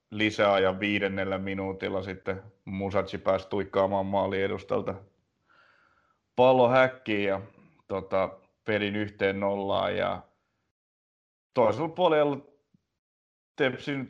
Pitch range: 95-105 Hz